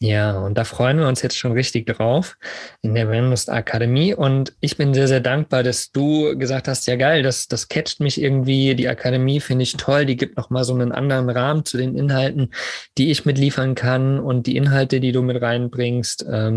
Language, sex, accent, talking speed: German, male, German, 210 wpm